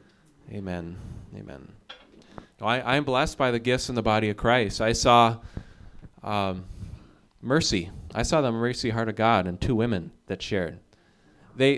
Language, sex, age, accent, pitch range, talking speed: English, male, 30-49, American, 105-130 Hz, 160 wpm